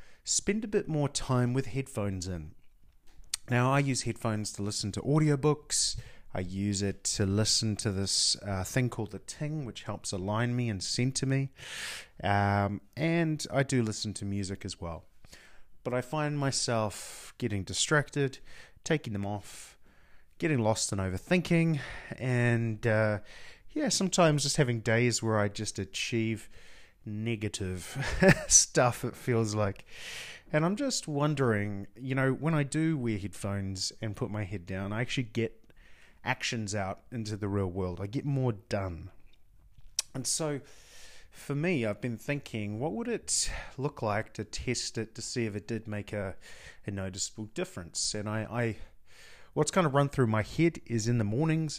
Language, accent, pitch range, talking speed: English, Australian, 100-135 Hz, 165 wpm